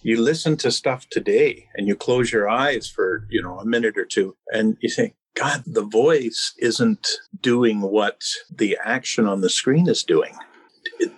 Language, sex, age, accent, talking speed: English, male, 50-69, American, 180 wpm